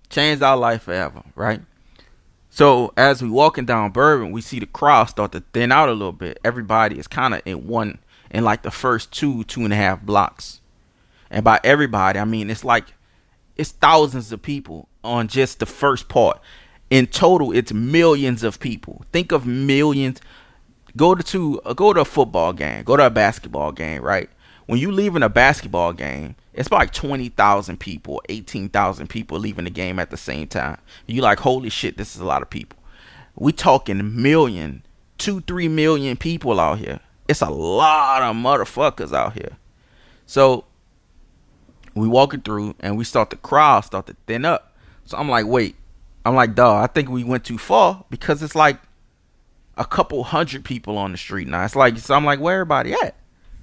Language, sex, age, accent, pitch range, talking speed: English, male, 30-49, American, 100-140 Hz, 190 wpm